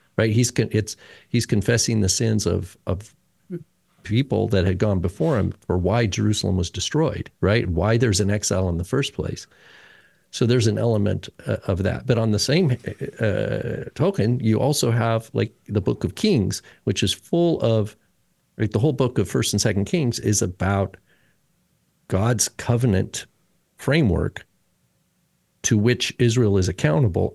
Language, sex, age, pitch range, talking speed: English, male, 50-69, 100-130 Hz, 165 wpm